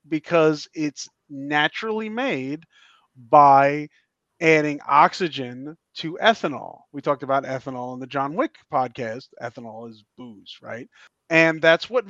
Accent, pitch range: American, 140-170 Hz